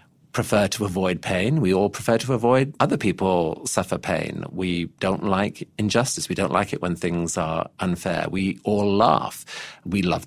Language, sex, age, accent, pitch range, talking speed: English, male, 40-59, British, 95-135 Hz, 175 wpm